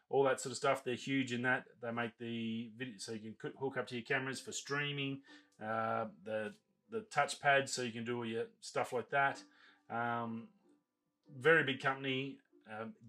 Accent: Australian